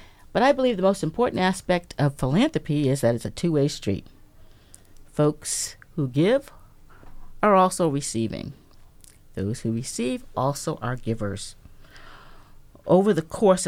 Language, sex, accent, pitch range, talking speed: English, female, American, 135-190 Hz, 130 wpm